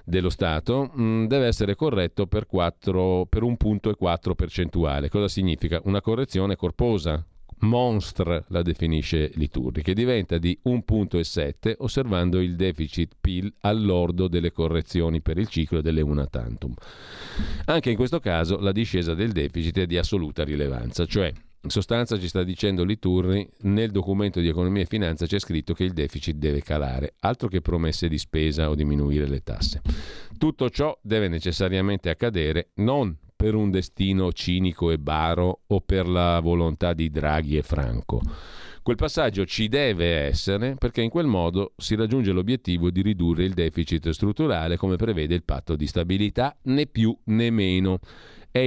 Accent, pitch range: native, 85-105 Hz